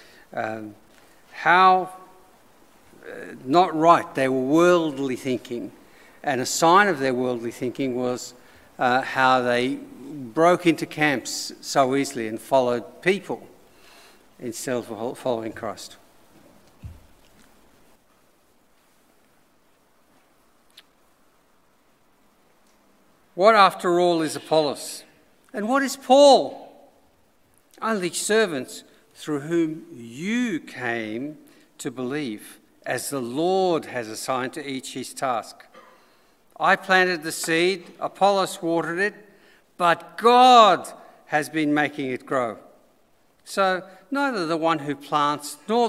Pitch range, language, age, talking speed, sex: 140-205 Hz, English, 50-69, 105 wpm, male